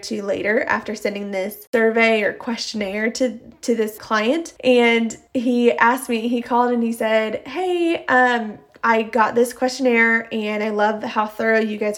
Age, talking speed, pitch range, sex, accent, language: 20-39, 170 wpm, 215-255 Hz, female, American, English